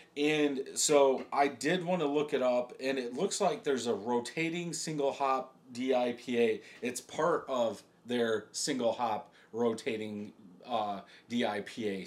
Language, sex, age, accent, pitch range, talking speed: English, male, 30-49, American, 115-150 Hz, 140 wpm